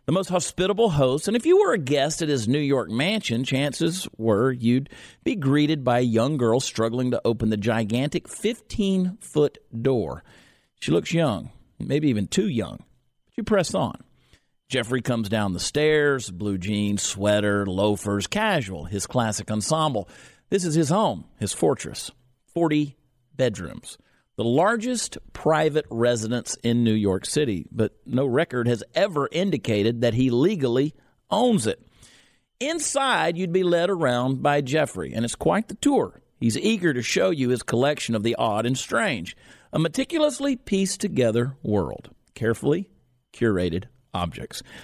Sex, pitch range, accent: male, 115-160 Hz, American